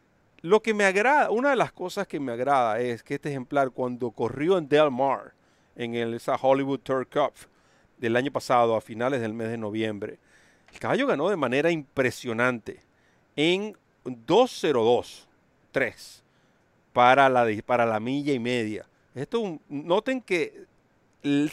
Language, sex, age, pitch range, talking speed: Spanish, male, 50-69, 120-155 Hz, 155 wpm